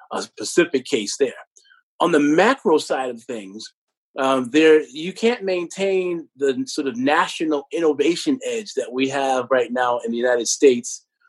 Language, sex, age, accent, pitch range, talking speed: English, male, 30-49, American, 120-160 Hz, 160 wpm